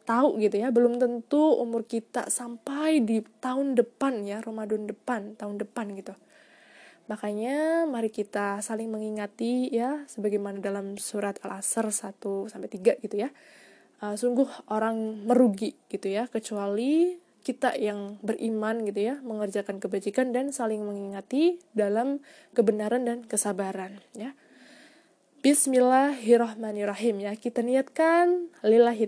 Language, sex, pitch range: Indonesian, female, 210-260 Hz